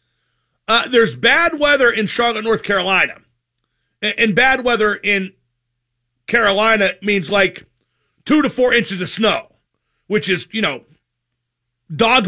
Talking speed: 130 wpm